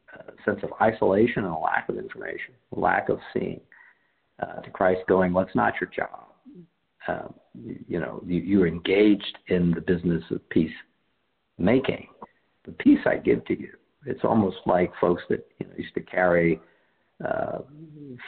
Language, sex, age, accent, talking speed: English, male, 50-69, American, 165 wpm